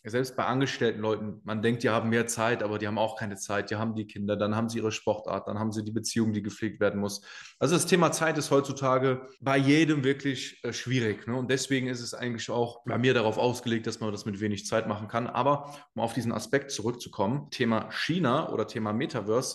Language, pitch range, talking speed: German, 110-140 Hz, 225 wpm